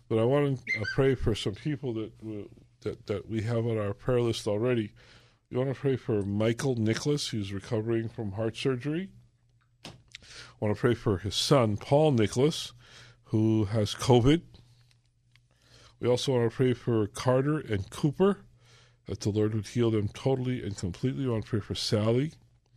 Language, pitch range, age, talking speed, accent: English, 110-120 Hz, 40-59, 170 wpm, American